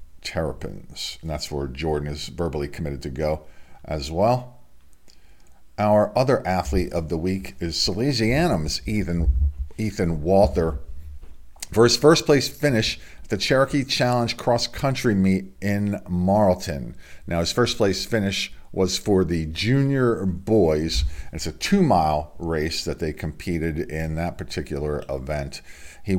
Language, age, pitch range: English, 50-69, 75-110 Hz